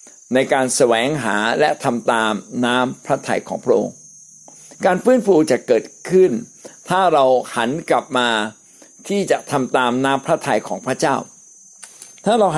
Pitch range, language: 125-165 Hz, Thai